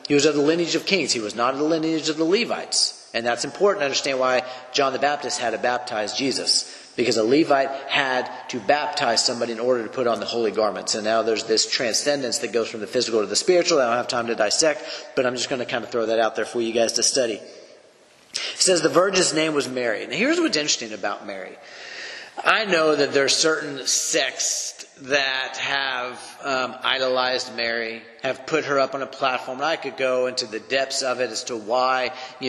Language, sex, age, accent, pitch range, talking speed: English, male, 40-59, American, 125-150 Hz, 230 wpm